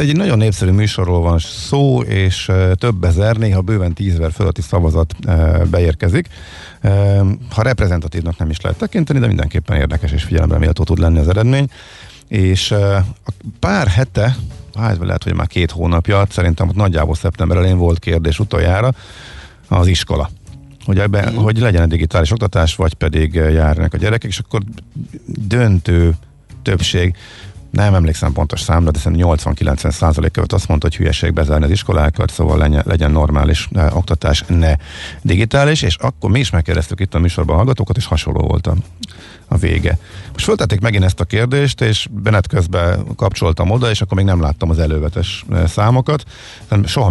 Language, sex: Hungarian, male